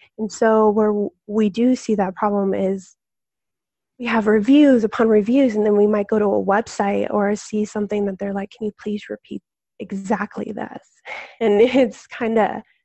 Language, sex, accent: English, female, American